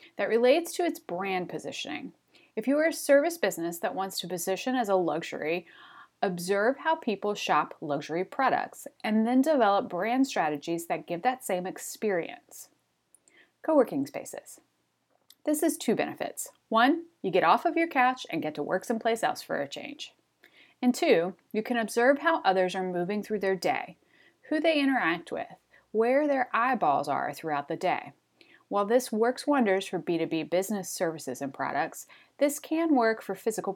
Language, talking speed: English, 170 wpm